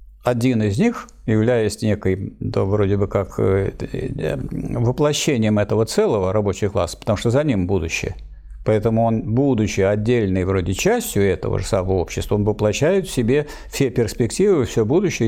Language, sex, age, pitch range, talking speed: Russian, male, 60-79, 100-135 Hz, 140 wpm